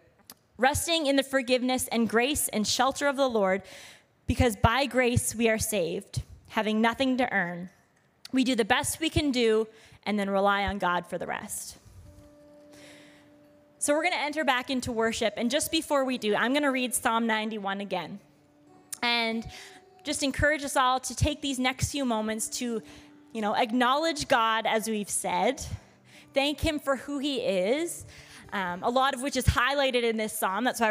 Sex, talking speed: female, 180 wpm